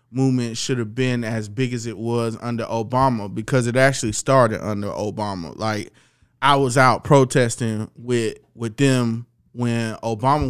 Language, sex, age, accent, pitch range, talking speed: English, male, 20-39, American, 115-135 Hz, 155 wpm